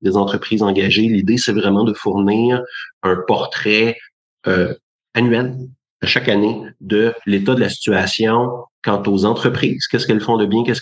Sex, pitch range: male, 95-115 Hz